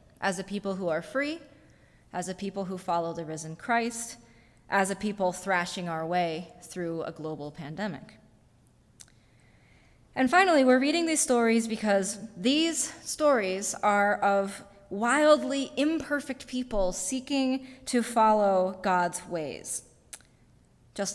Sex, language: female, English